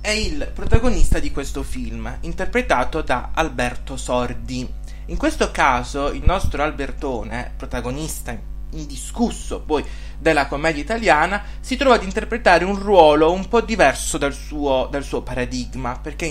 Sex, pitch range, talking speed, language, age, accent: male, 135-190 Hz, 135 wpm, Italian, 20-39, native